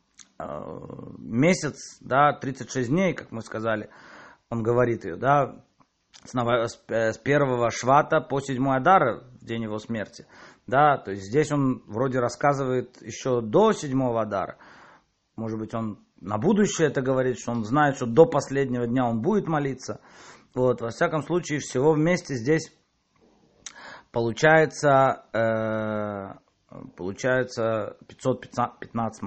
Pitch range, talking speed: 115-160 Hz, 125 wpm